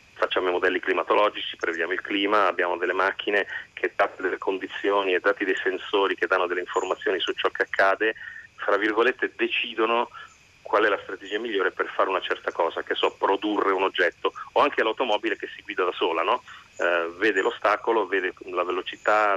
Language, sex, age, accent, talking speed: Italian, male, 30-49, native, 185 wpm